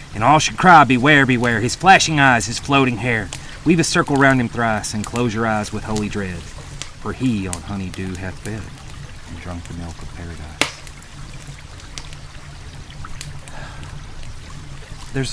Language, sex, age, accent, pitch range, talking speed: English, male, 30-49, American, 90-115 Hz, 150 wpm